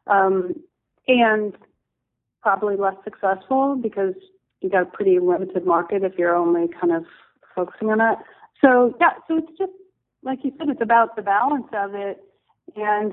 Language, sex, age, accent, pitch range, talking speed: English, female, 30-49, American, 195-245 Hz, 160 wpm